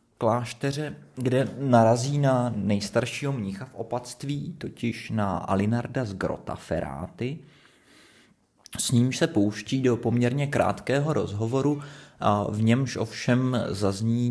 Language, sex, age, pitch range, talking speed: Czech, male, 30-49, 100-120 Hz, 115 wpm